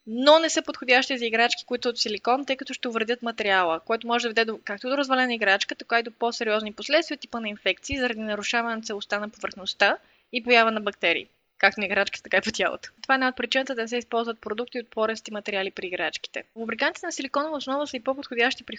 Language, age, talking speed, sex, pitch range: Bulgarian, 20-39, 225 wpm, female, 210-265 Hz